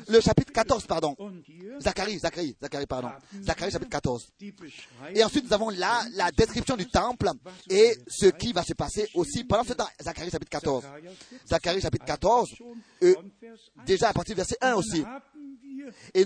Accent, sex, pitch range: French, male, 200-250 Hz